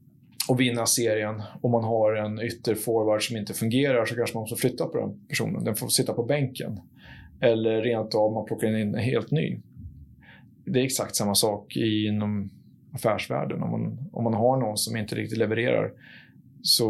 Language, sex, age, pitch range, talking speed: Swedish, male, 30-49, 110-130 Hz, 180 wpm